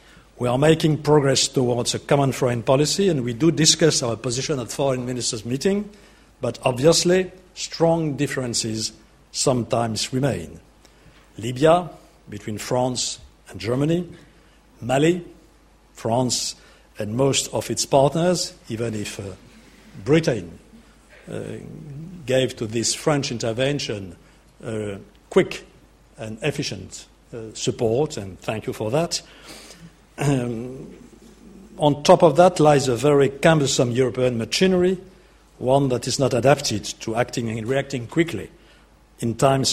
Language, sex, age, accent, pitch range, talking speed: English, male, 60-79, French, 110-150 Hz, 120 wpm